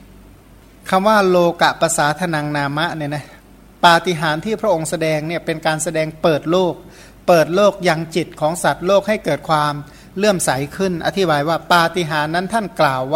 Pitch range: 155-185 Hz